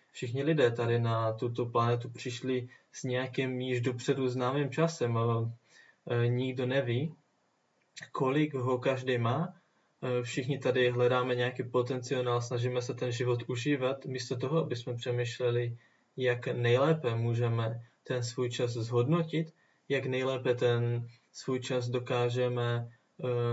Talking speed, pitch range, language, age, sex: 120 wpm, 120-130 Hz, Czech, 20-39, male